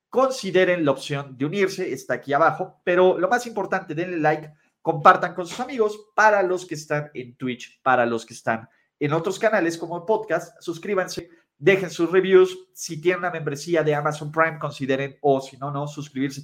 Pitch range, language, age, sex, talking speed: 145-195 Hz, Spanish, 30-49, male, 185 wpm